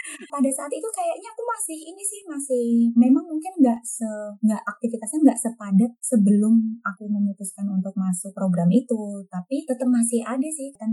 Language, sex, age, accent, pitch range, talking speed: Indonesian, female, 20-39, native, 205-265 Hz, 165 wpm